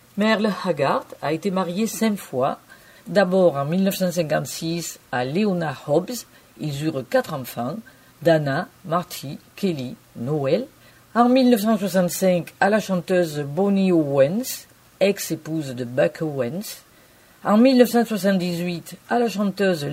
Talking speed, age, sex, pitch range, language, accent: 110 wpm, 50-69, female, 155-220 Hz, French, French